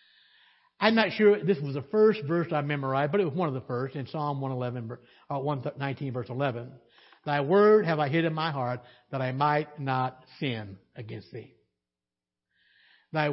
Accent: American